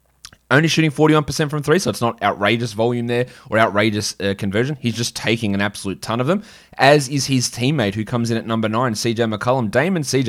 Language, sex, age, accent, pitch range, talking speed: English, male, 20-39, Australian, 105-130 Hz, 220 wpm